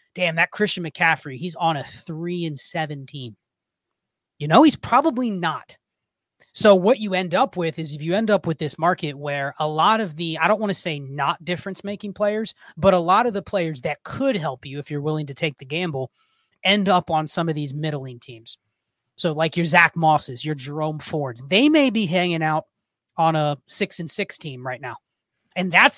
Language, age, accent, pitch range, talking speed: English, 30-49, American, 150-190 Hz, 205 wpm